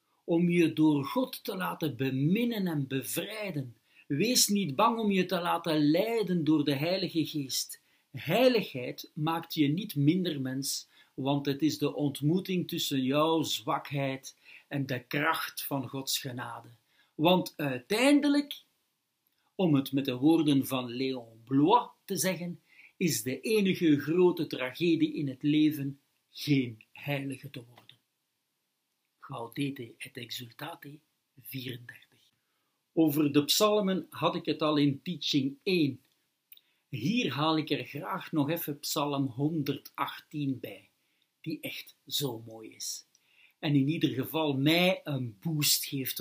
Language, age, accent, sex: Dutch, 60-79, Dutch, male